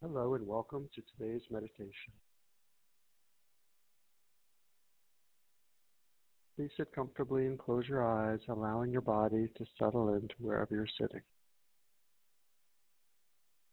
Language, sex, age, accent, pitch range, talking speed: English, male, 50-69, American, 130-200 Hz, 95 wpm